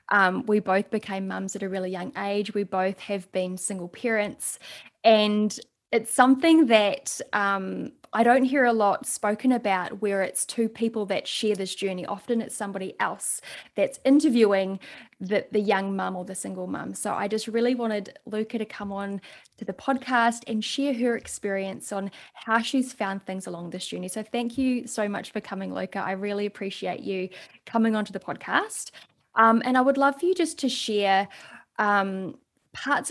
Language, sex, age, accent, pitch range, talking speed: English, female, 10-29, Australian, 195-240 Hz, 185 wpm